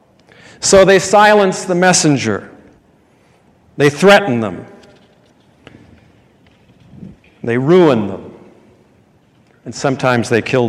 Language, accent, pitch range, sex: English, American, 125-175 Hz, male